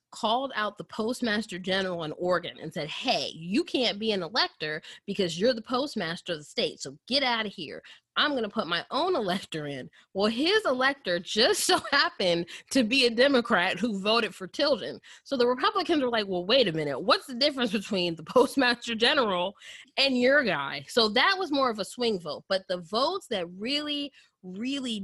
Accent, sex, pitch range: American, female, 175-250 Hz